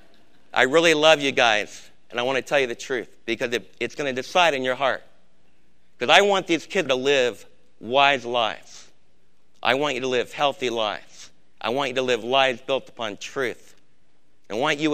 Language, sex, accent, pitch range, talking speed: English, male, American, 120-165 Hz, 200 wpm